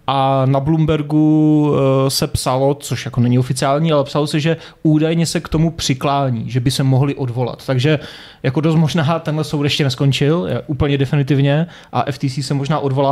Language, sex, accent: Czech, male, native